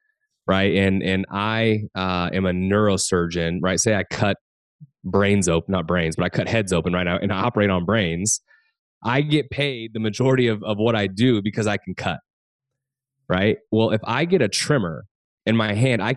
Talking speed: 195 wpm